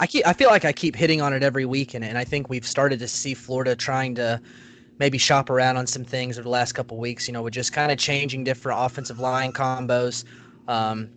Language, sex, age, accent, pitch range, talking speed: English, male, 20-39, American, 120-145 Hz, 240 wpm